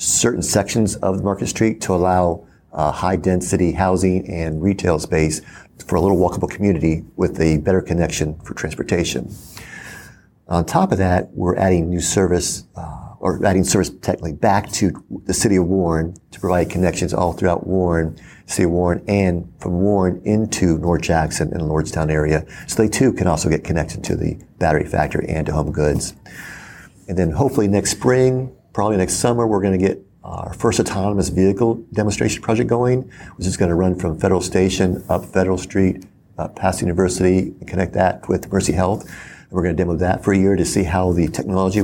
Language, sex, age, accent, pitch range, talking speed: English, male, 50-69, American, 85-100 Hz, 180 wpm